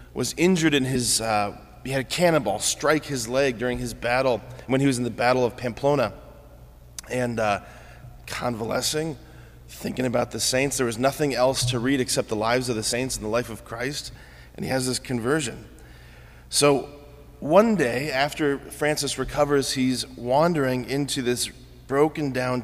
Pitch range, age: 110-135 Hz, 30-49